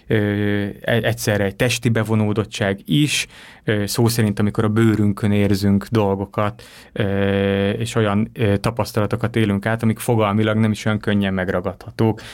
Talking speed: 115 wpm